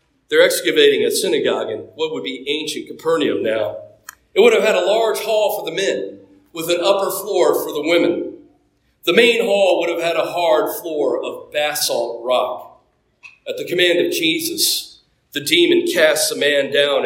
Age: 40-59